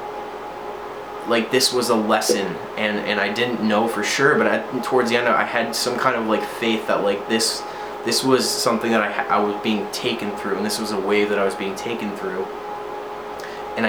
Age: 20-39